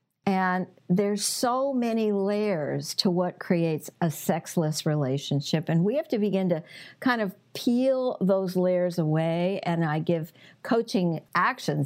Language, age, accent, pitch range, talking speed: English, 50-69, American, 155-205 Hz, 140 wpm